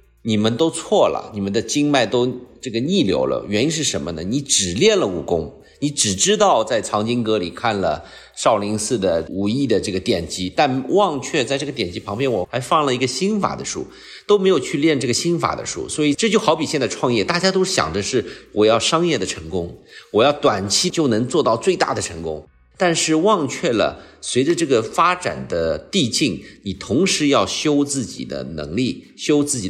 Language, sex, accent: Chinese, male, native